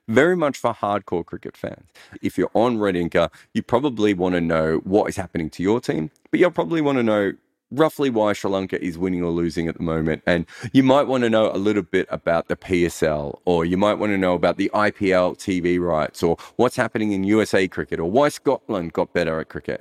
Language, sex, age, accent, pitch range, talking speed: English, male, 30-49, Australian, 95-140 Hz, 225 wpm